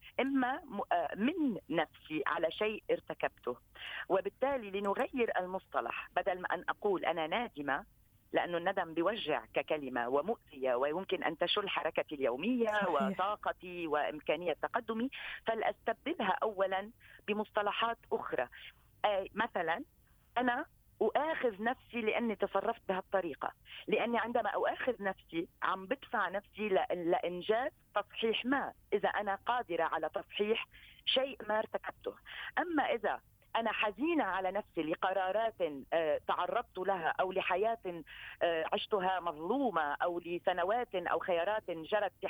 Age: 40-59